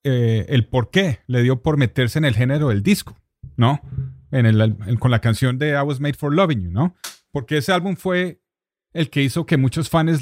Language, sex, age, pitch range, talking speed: English, male, 30-49, 120-150 Hz, 225 wpm